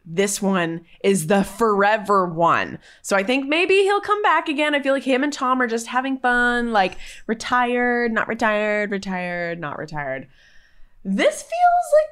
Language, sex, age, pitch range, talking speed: English, female, 20-39, 180-260 Hz, 170 wpm